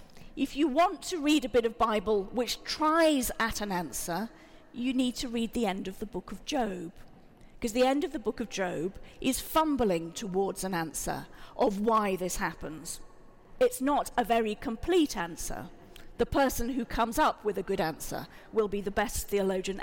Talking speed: 190 wpm